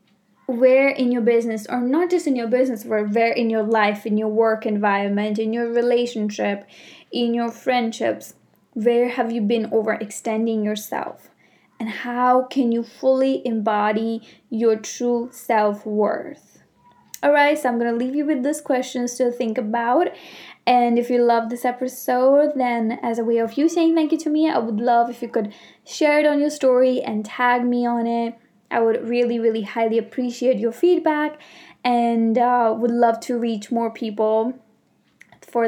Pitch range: 225-255 Hz